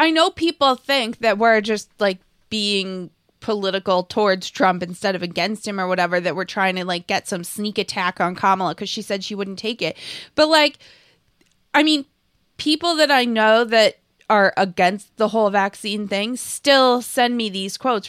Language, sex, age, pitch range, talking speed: English, female, 20-39, 190-255 Hz, 185 wpm